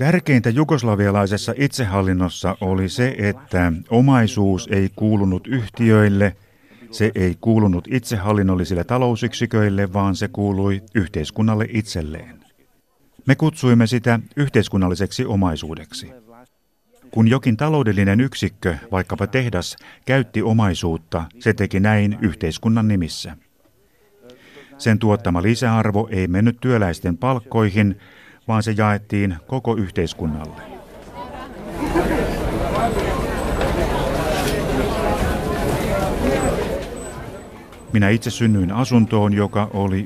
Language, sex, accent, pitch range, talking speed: Finnish, male, native, 95-120 Hz, 85 wpm